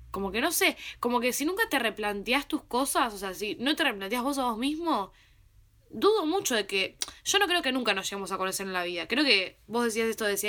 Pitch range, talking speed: 205-275 Hz, 250 wpm